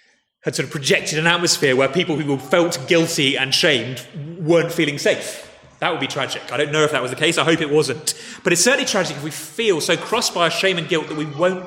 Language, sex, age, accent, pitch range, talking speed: English, male, 30-49, British, 135-185 Hz, 250 wpm